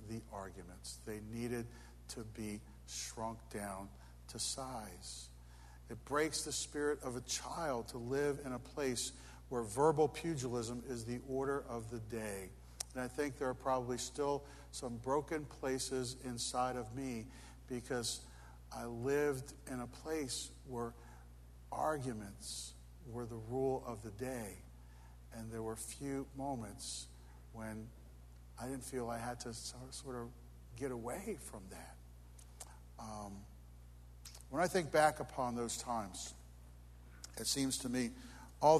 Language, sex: English, male